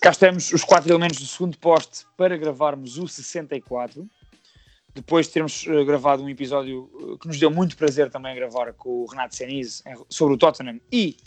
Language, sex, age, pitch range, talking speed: Portuguese, male, 20-39, 125-150 Hz, 175 wpm